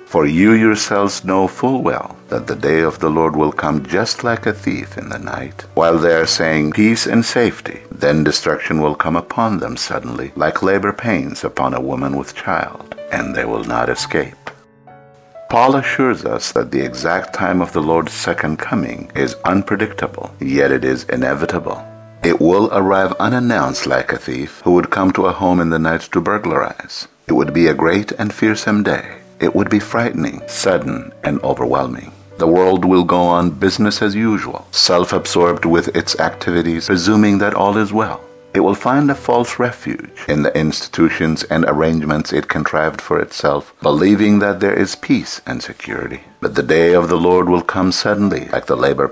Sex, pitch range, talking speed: male, 80-110 Hz, 185 wpm